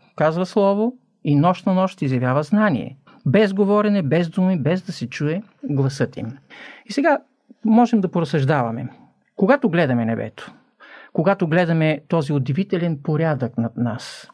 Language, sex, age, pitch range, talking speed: Bulgarian, male, 50-69, 150-230 Hz, 140 wpm